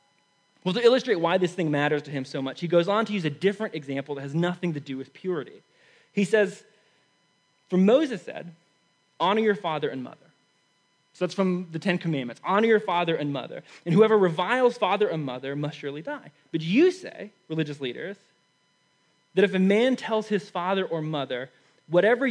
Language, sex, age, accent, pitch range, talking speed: English, male, 20-39, American, 145-195 Hz, 190 wpm